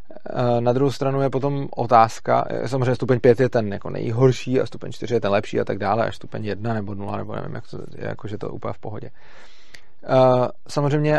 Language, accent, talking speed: Czech, native, 210 wpm